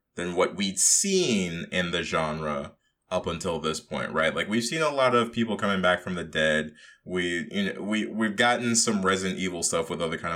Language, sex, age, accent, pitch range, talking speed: English, male, 20-39, American, 95-135 Hz, 210 wpm